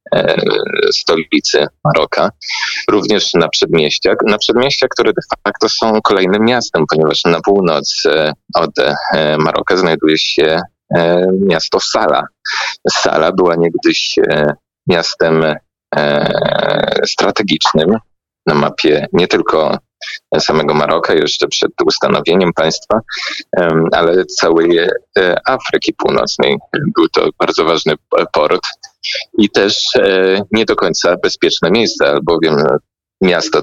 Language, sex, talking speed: Polish, male, 100 wpm